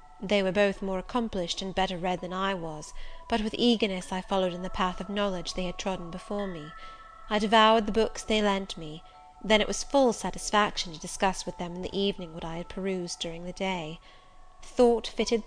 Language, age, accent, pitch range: English, 30-49, British, 180-220 Hz